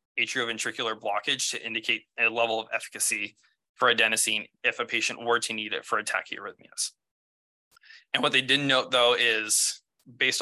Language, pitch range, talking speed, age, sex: English, 115-135 Hz, 160 wpm, 20-39, male